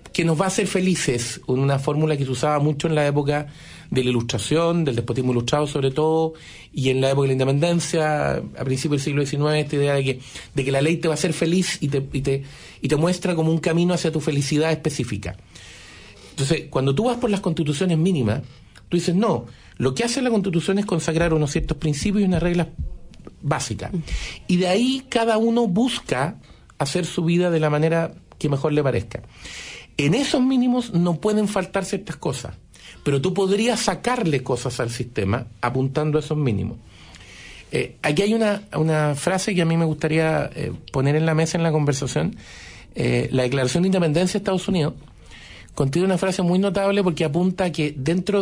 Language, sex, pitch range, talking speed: Spanish, male, 135-180 Hz, 195 wpm